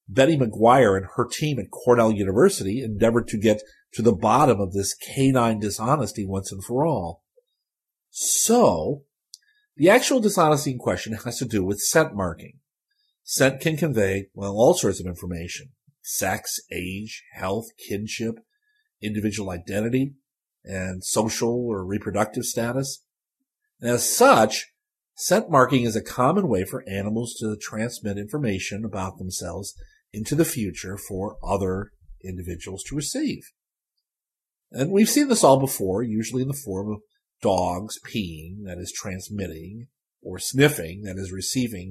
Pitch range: 100-135 Hz